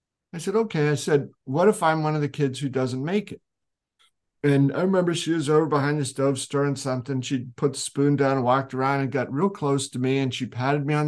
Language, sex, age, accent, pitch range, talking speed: English, male, 50-69, American, 125-150 Hz, 250 wpm